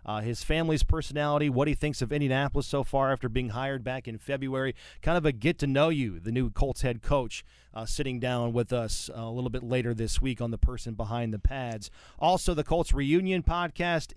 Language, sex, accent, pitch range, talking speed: English, male, American, 120-145 Hz, 205 wpm